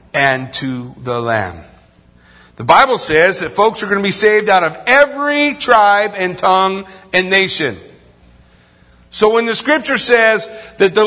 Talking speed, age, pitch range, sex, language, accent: 155 wpm, 50-69, 145-225 Hz, male, English, American